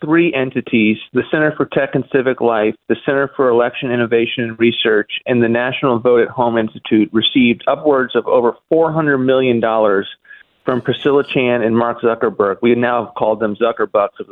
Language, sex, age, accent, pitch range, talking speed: English, male, 40-59, American, 120-150 Hz, 175 wpm